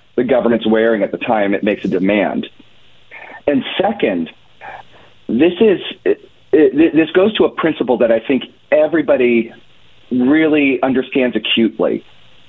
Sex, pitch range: male, 110-150 Hz